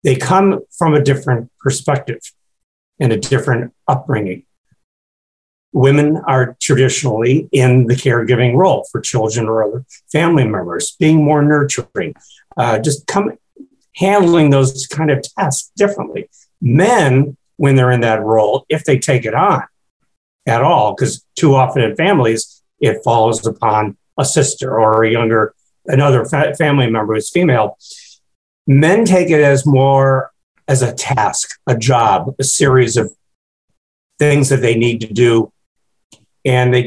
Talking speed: 140 wpm